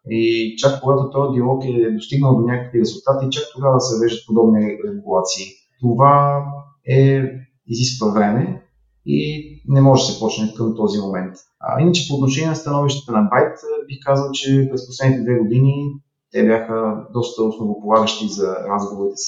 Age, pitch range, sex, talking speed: 30-49, 115-140 Hz, male, 155 wpm